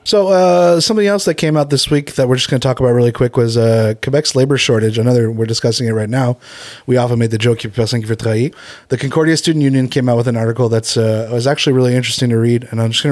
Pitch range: 120-145 Hz